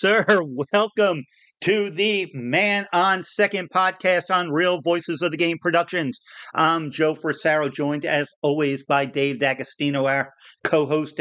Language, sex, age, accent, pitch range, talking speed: English, male, 50-69, American, 145-180 Hz, 140 wpm